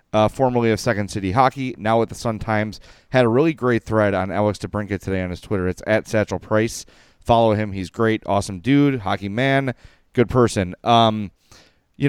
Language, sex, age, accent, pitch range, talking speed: English, male, 30-49, American, 100-130 Hz, 195 wpm